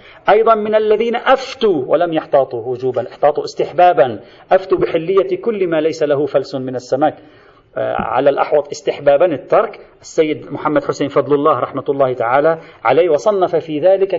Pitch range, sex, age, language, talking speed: 150-215 Hz, male, 40-59, Arabic, 145 wpm